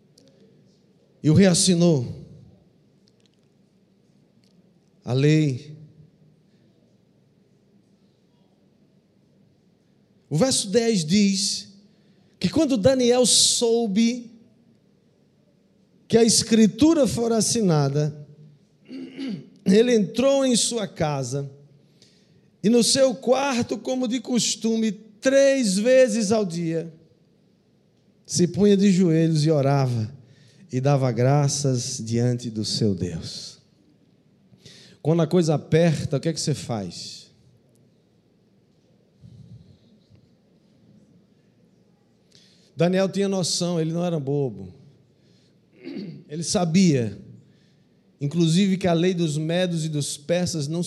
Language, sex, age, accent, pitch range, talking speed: Portuguese, male, 50-69, Brazilian, 145-205 Hz, 90 wpm